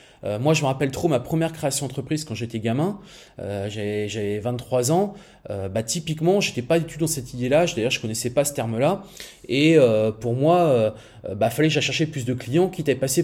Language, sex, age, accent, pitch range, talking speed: French, male, 20-39, French, 130-190 Hz, 235 wpm